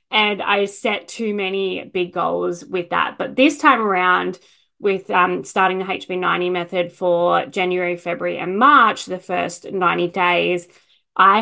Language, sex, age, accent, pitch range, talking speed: English, female, 20-39, Australian, 185-220 Hz, 150 wpm